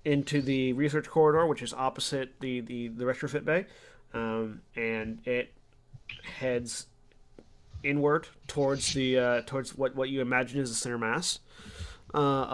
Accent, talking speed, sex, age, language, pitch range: American, 145 wpm, male, 30-49, English, 125-150 Hz